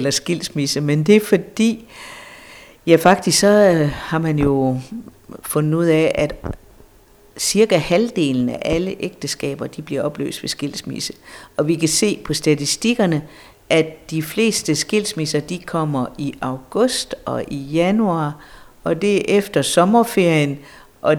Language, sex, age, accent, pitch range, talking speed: Danish, female, 60-79, native, 145-180 Hz, 140 wpm